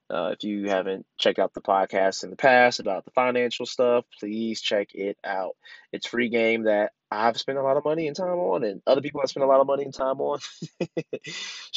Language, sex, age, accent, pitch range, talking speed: English, male, 20-39, American, 100-125 Hz, 225 wpm